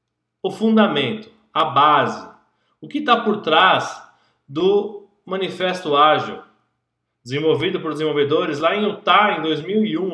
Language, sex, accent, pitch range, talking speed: Portuguese, male, Brazilian, 150-220 Hz, 120 wpm